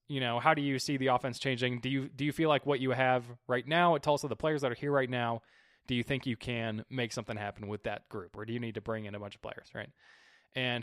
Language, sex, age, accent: English, male, 20-39, American